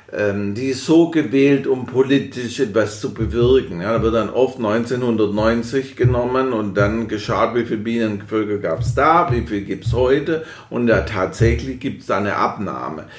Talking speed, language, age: 175 wpm, German, 50-69